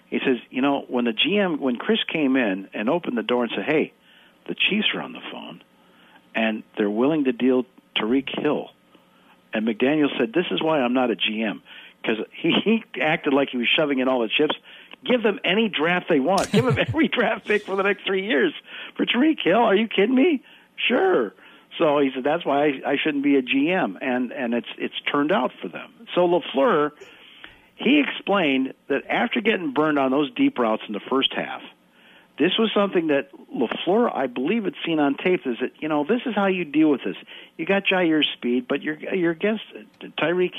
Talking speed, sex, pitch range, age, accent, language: 210 wpm, male, 130-195 Hz, 60-79, American, English